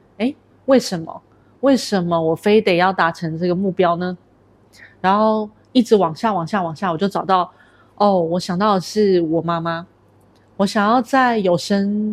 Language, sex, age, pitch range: Chinese, female, 30-49, 165-200 Hz